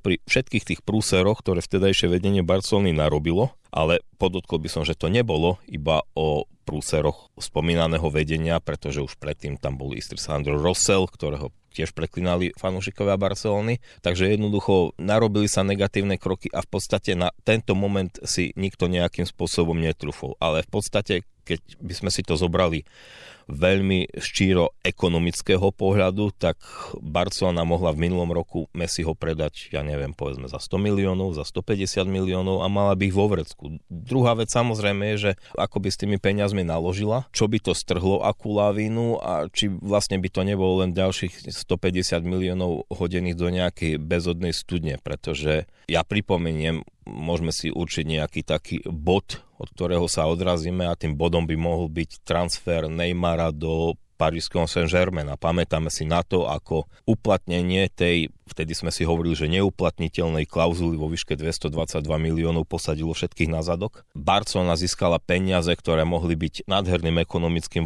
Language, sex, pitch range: Slovak, male, 80-95 Hz